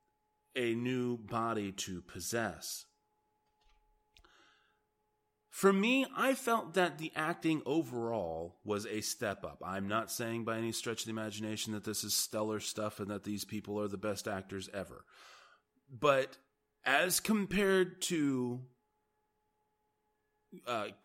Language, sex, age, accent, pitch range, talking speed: English, male, 30-49, American, 105-155 Hz, 130 wpm